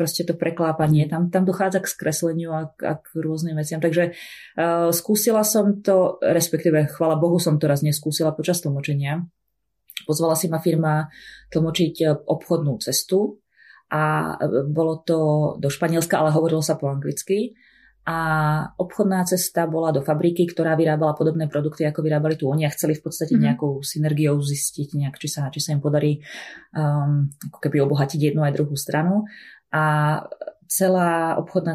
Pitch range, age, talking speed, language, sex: 150-185 Hz, 30-49, 155 wpm, Czech, female